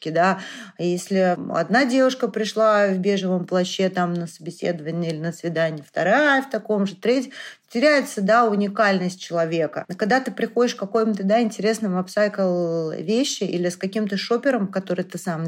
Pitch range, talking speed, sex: 170-210 Hz, 150 wpm, female